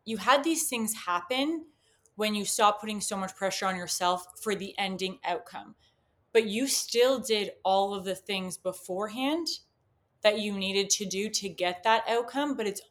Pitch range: 185-220 Hz